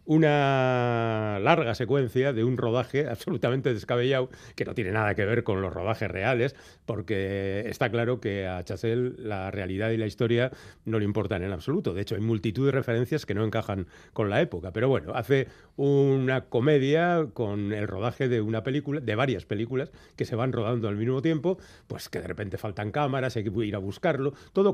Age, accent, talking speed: 40-59, Spanish, 190 wpm